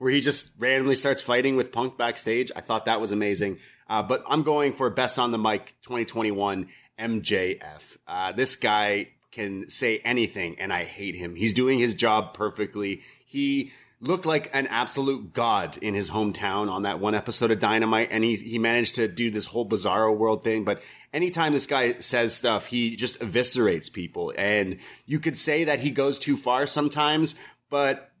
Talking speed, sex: 185 wpm, male